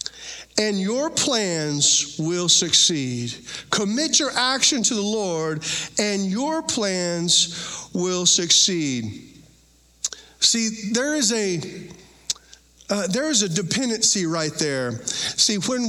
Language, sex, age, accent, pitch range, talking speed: English, male, 50-69, American, 180-265 Hz, 110 wpm